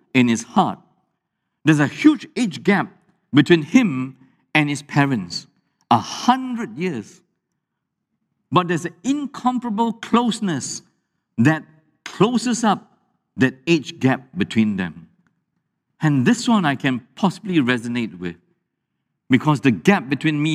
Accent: Malaysian